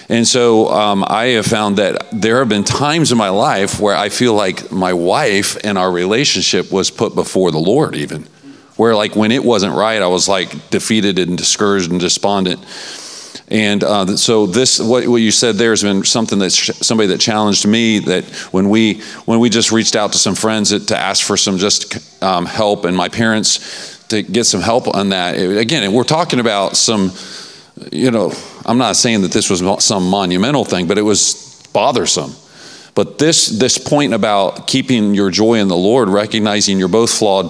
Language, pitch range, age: English, 95-110 Hz, 40-59